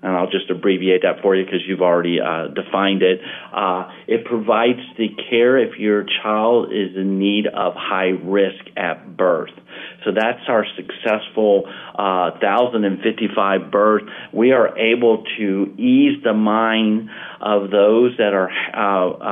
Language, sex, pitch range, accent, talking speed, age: English, male, 95-115 Hz, American, 150 wpm, 40-59